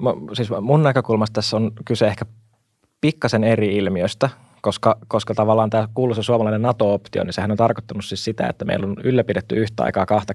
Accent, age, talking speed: native, 20-39, 175 wpm